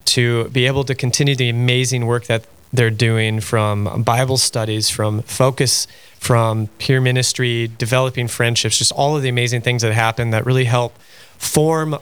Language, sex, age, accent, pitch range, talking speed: English, male, 30-49, American, 110-130 Hz, 165 wpm